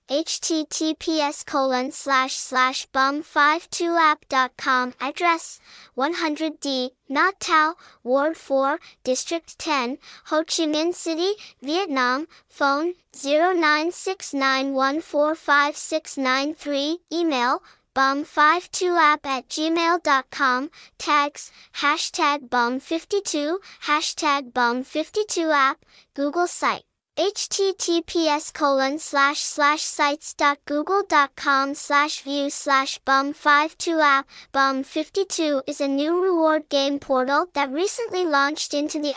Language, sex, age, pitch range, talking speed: English, male, 10-29, 275-325 Hz, 80 wpm